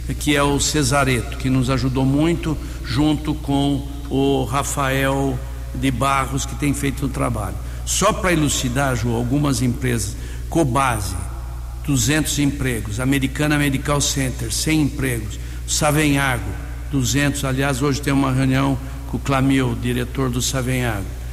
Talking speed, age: 130 wpm, 60-79